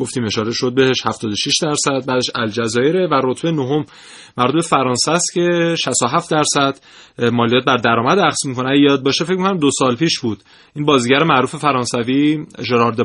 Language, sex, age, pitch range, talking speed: Persian, male, 30-49, 120-145 Hz, 160 wpm